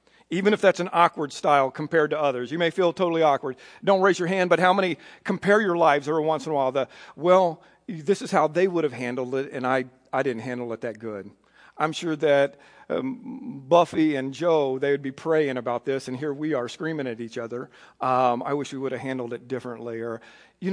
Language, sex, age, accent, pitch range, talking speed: English, male, 50-69, American, 140-180 Hz, 230 wpm